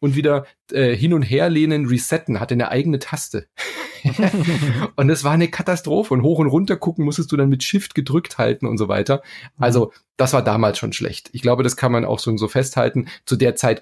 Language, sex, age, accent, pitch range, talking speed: German, male, 30-49, German, 105-135 Hz, 215 wpm